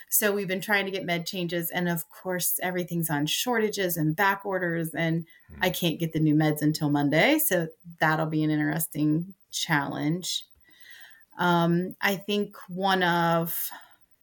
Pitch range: 155-180 Hz